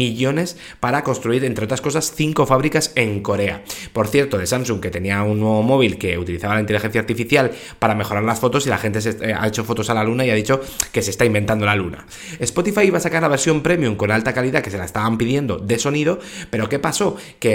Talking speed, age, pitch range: 235 wpm, 20-39, 110-145 Hz